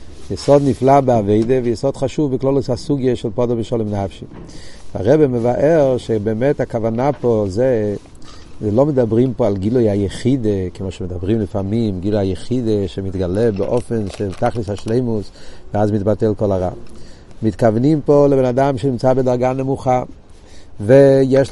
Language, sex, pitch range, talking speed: Hebrew, male, 105-135 Hz, 130 wpm